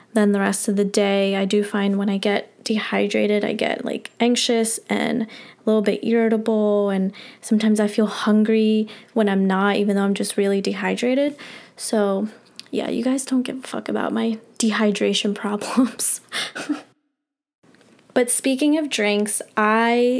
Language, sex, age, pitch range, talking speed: English, female, 10-29, 205-230 Hz, 155 wpm